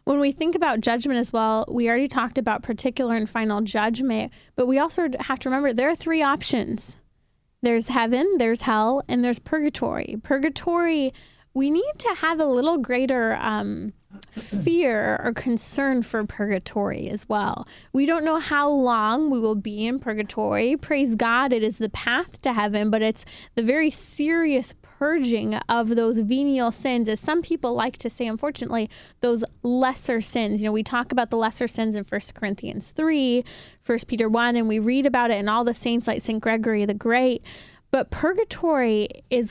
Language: English